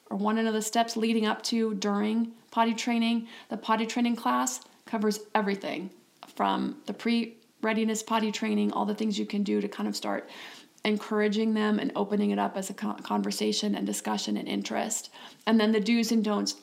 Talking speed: 185 wpm